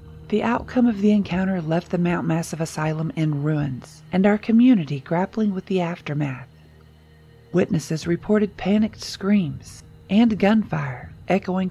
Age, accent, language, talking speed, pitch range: 40-59, American, English, 135 wpm, 150-195 Hz